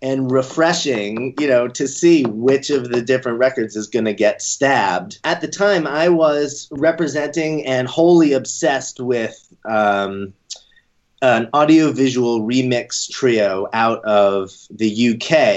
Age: 30-49